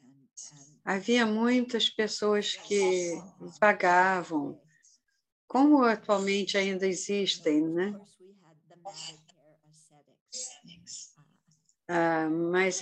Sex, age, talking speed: female, 50-69, 55 wpm